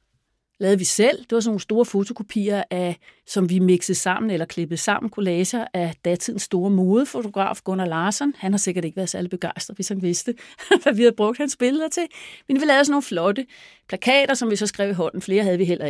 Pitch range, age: 180-240 Hz, 40-59